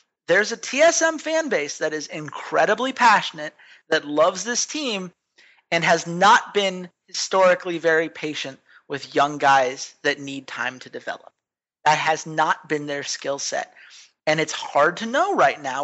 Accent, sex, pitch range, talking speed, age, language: American, male, 145-190 Hz, 160 wpm, 30-49, English